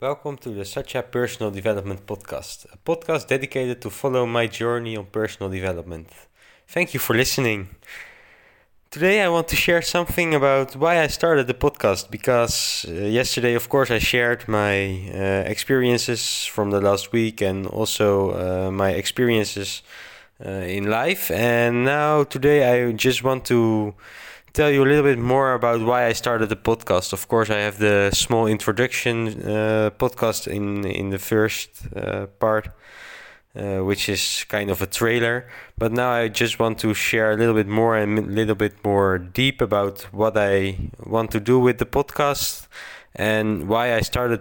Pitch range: 100-125 Hz